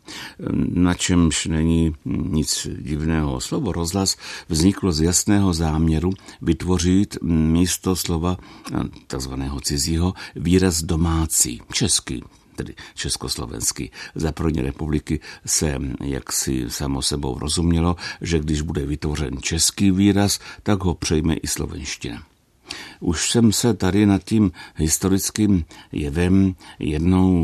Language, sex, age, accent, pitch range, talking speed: Czech, male, 60-79, native, 80-95 Hz, 105 wpm